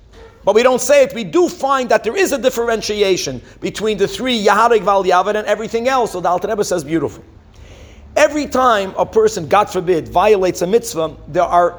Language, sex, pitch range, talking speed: English, male, 185-245 Hz, 200 wpm